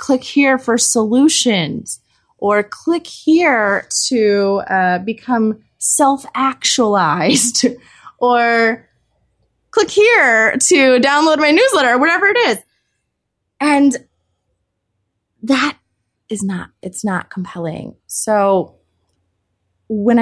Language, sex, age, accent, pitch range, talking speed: English, female, 20-39, American, 180-255 Hz, 90 wpm